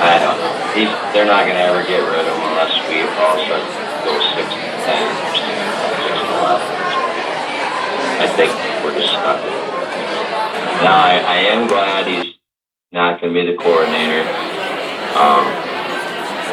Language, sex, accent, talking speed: English, male, American, 150 wpm